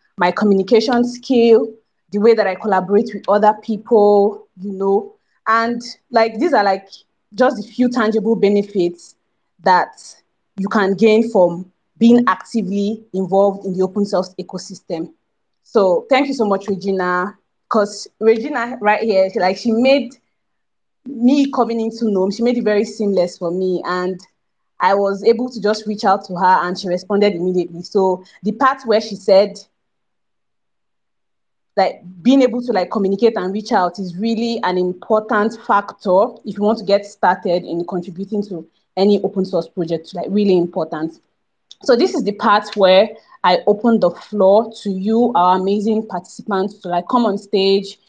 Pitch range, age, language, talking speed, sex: 185-225 Hz, 20-39, English, 165 wpm, female